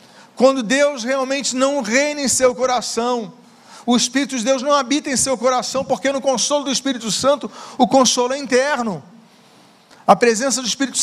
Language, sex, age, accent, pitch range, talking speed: Portuguese, male, 40-59, Brazilian, 225-265 Hz, 170 wpm